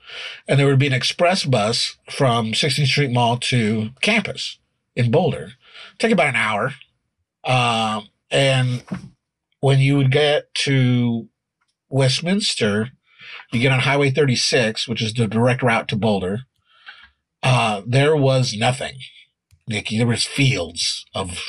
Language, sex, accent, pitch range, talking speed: English, male, American, 110-140 Hz, 135 wpm